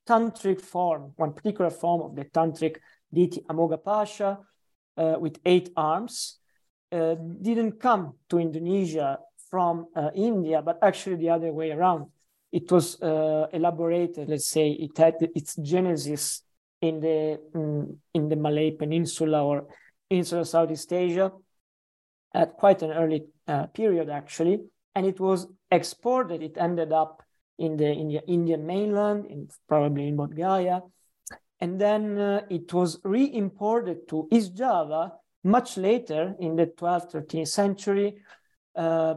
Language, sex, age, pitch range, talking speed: English, male, 40-59, 155-190 Hz, 140 wpm